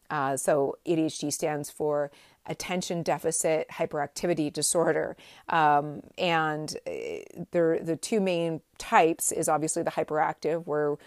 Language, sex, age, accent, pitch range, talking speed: English, female, 40-59, American, 150-180 Hz, 120 wpm